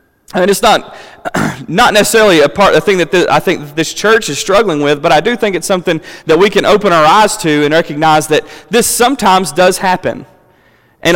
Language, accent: English, American